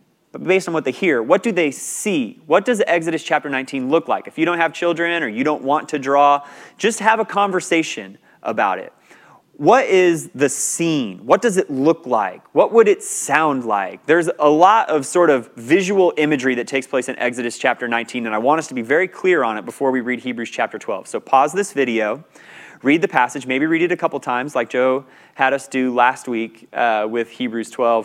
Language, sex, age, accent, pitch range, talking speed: English, male, 30-49, American, 120-165 Hz, 220 wpm